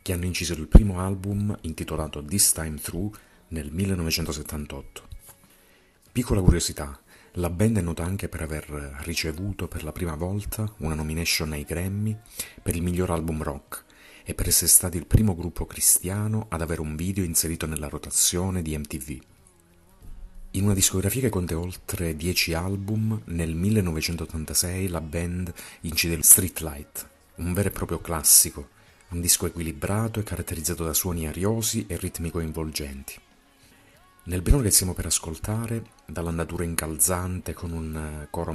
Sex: male